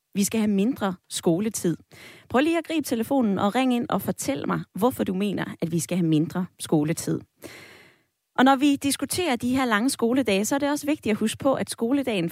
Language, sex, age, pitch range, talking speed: Danish, female, 20-39, 180-260 Hz, 210 wpm